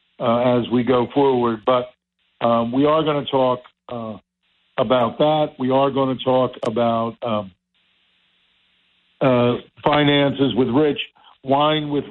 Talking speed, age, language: 140 wpm, 60-79, English